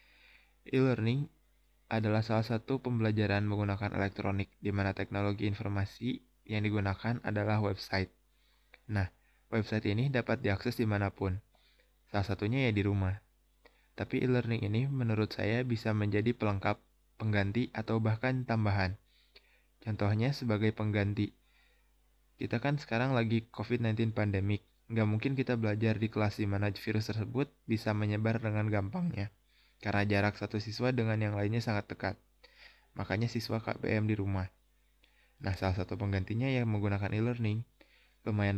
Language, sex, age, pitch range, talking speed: Indonesian, male, 20-39, 100-115 Hz, 130 wpm